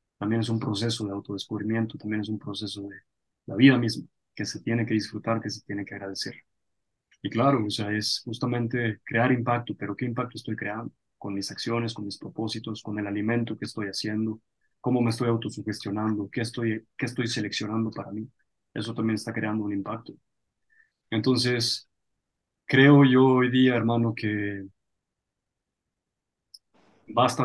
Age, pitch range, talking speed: 20-39, 105-115 Hz, 160 wpm